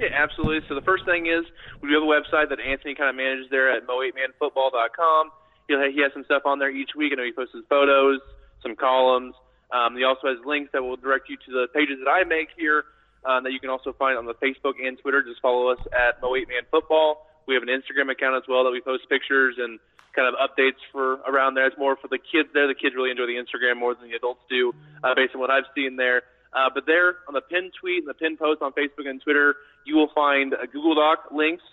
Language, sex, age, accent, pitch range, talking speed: English, male, 20-39, American, 130-150 Hz, 250 wpm